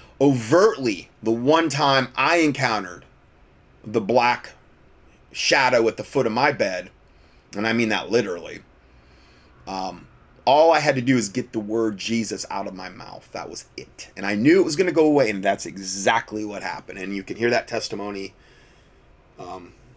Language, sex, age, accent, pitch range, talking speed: English, male, 30-49, American, 105-145 Hz, 175 wpm